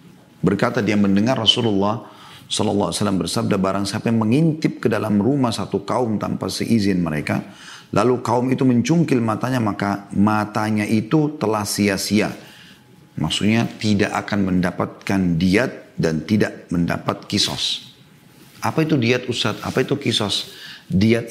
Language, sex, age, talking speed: Indonesian, male, 40-59, 125 wpm